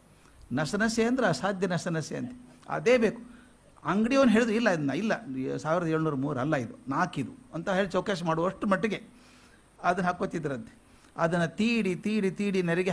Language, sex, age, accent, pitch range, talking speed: Kannada, male, 50-69, native, 150-210 Hz, 140 wpm